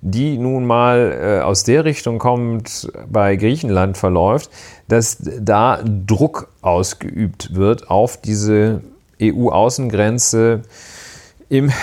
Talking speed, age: 100 wpm, 40-59